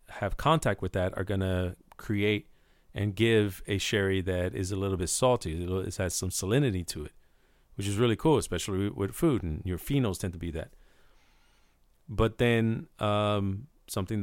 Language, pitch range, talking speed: English, 90-110 Hz, 175 wpm